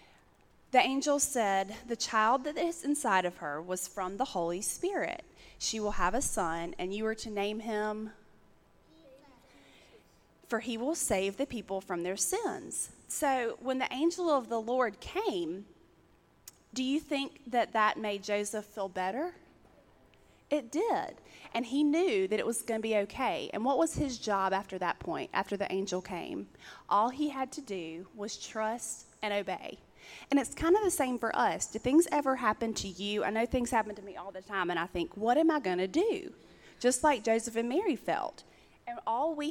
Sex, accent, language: female, American, English